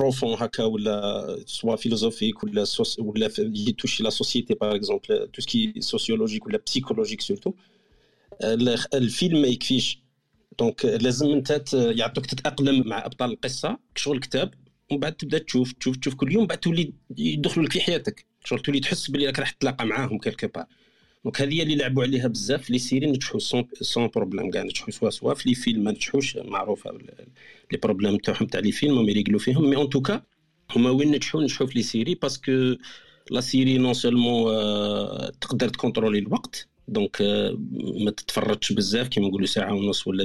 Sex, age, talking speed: male, 50-69, 135 wpm